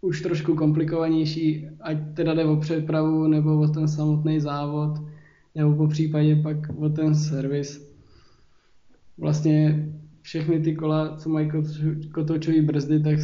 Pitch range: 150-160 Hz